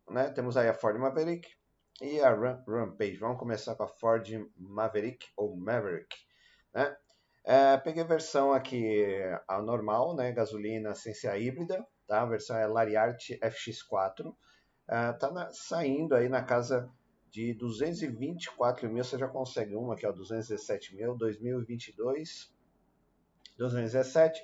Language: Portuguese